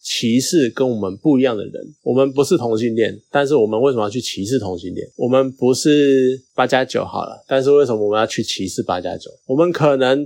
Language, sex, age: Chinese, male, 20-39